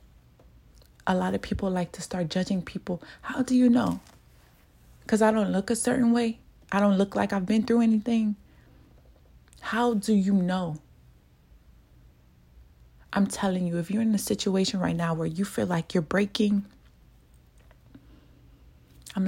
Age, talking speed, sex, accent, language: 20-39, 155 wpm, female, American, English